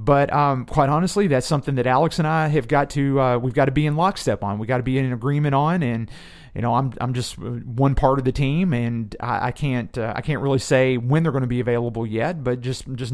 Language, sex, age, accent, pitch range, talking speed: English, male, 40-59, American, 125-150 Hz, 260 wpm